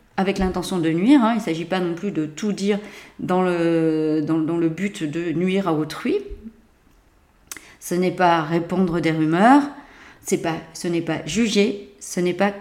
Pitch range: 170-225 Hz